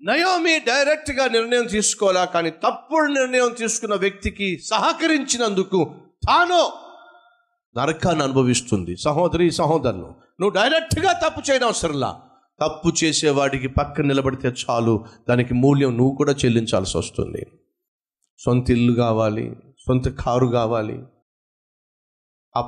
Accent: native